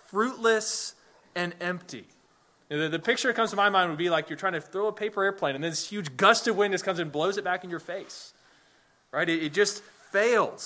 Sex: male